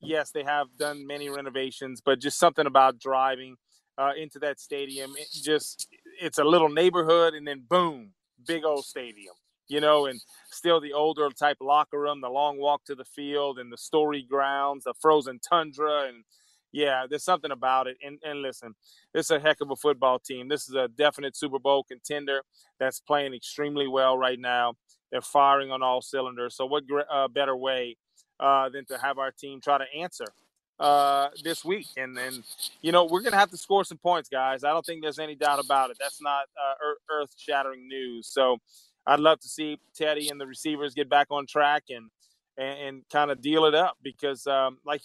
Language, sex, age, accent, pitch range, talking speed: English, male, 30-49, American, 135-150 Hz, 200 wpm